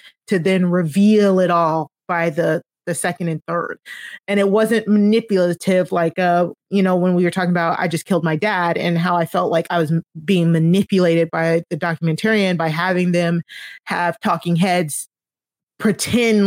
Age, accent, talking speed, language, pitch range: 30-49, American, 175 wpm, English, 170-210 Hz